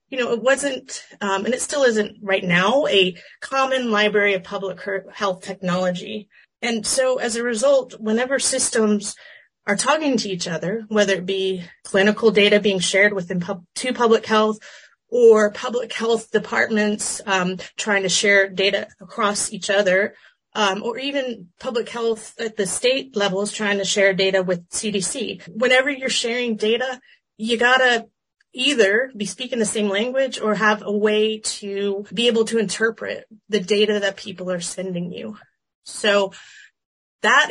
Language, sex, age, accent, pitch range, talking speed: English, female, 30-49, American, 195-240 Hz, 160 wpm